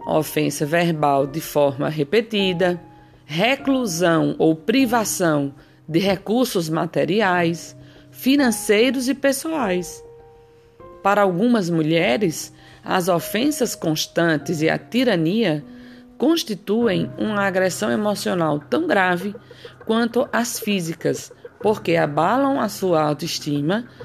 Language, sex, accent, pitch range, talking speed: Portuguese, female, Brazilian, 155-230 Hz, 90 wpm